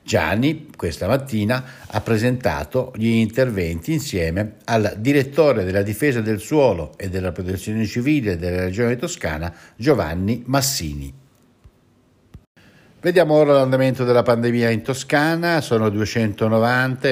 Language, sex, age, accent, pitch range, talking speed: Italian, male, 60-79, native, 95-125 Hz, 110 wpm